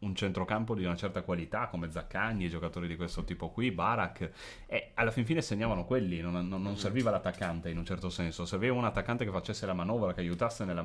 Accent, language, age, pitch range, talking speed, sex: native, Italian, 30-49, 90-120 Hz, 220 wpm, male